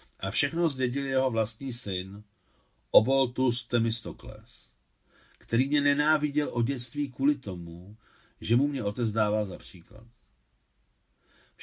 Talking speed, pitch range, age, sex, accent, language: 120 wpm, 100-130 Hz, 50-69, male, native, Czech